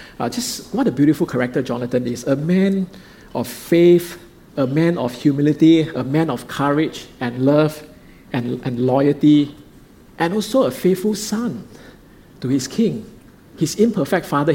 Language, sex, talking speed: English, male, 150 wpm